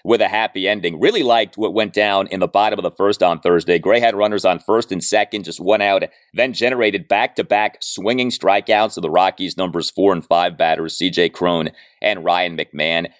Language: English